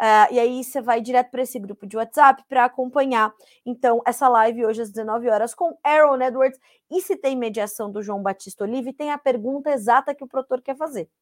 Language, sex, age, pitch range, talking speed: Portuguese, female, 20-39, 235-280 Hz, 215 wpm